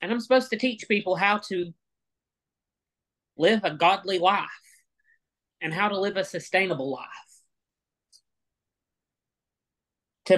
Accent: American